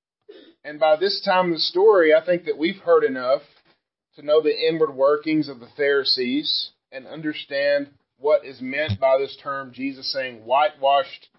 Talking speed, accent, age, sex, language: 170 wpm, American, 40-59, male, English